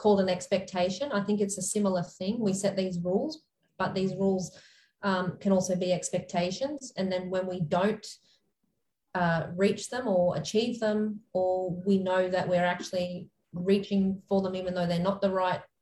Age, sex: 20-39, female